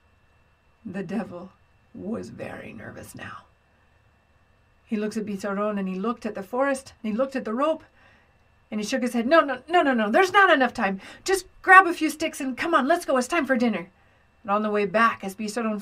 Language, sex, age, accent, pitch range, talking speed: English, female, 50-69, American, 220-340 Hz, 215 wpm